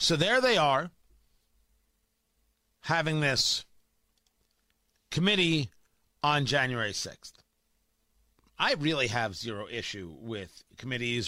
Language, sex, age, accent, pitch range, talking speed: English, male, 40-59, American, 110-185 Hz, 90 wpm